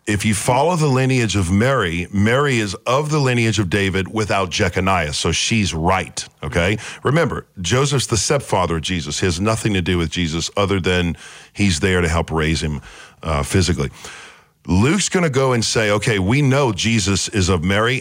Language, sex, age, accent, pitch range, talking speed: English, male, 50-69, American, 90-115 Hz, 185 wpm